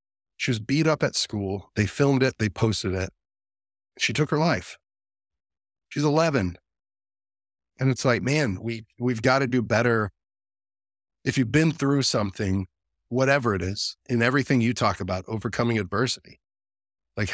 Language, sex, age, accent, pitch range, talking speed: English, male, 30-49, American, 100-130 Hz, 150 wpm